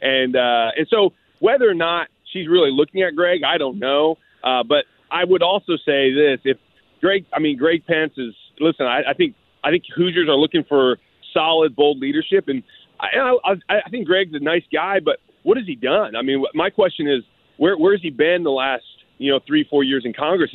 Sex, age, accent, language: male, 30-49, American, English